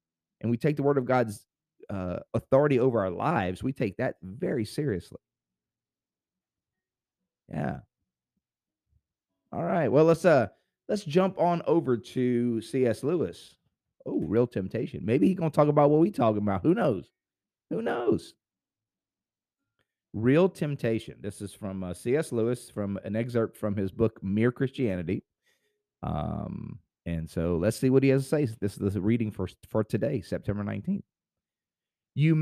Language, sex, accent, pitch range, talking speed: English, male, American, 90-130 Hz, 150 wpm